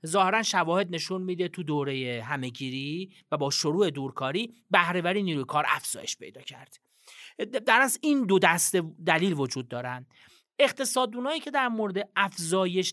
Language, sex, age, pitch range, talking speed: Persian, male, 40-59, 160-225 Hz, 145 wpm